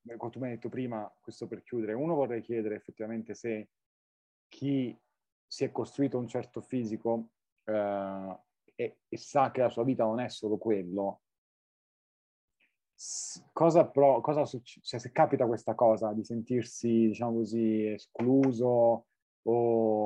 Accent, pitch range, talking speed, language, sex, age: native, 110-130 Hz, 145 wpm, Italian, male, 30-49